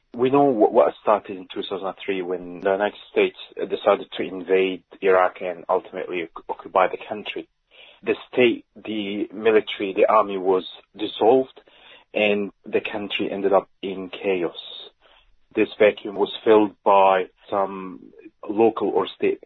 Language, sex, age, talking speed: English, male, 30-49, 135 wpm